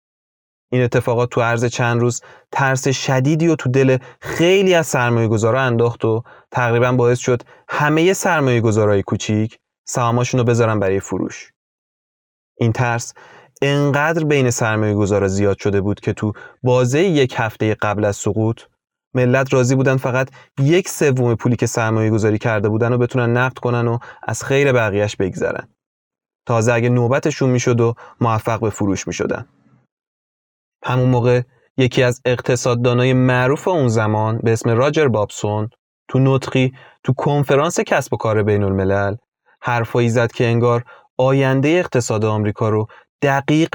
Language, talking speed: Persian, 145 wpm